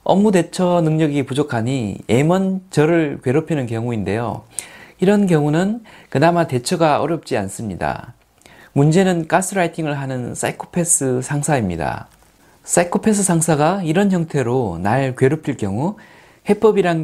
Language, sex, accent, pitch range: Korean, male, native, 125-180 Hz